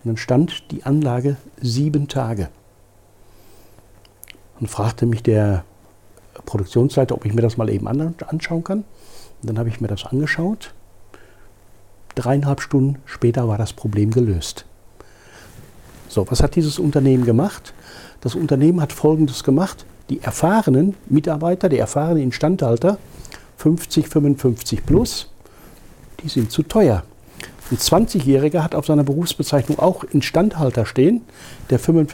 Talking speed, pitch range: 125 wpm, 115-155 Hz